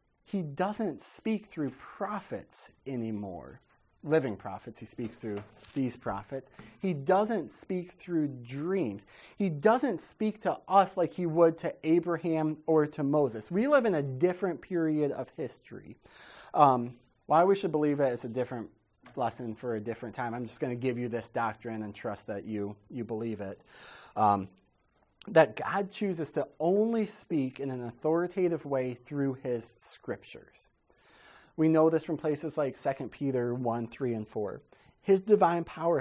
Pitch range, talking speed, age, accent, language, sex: 120-170 Hz, 160 wpm, 30-49, American, English, male